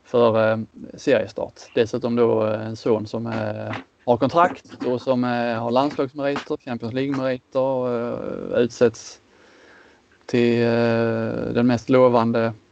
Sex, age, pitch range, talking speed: male, 20-39, 115-130 Hz, 125 wpm